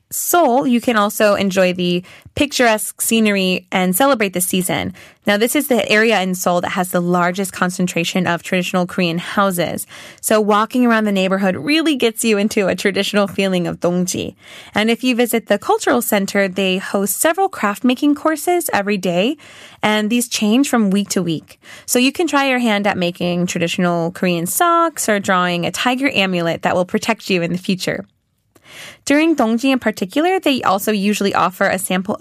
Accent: American